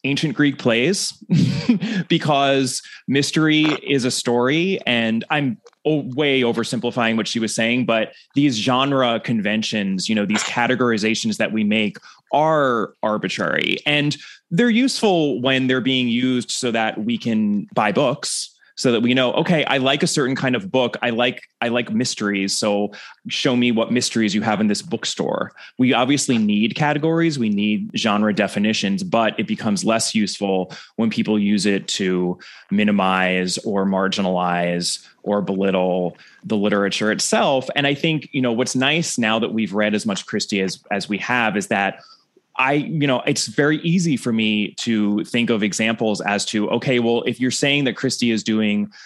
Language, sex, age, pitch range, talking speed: English, male, 20-39, 105-140 Hz, 170 wpm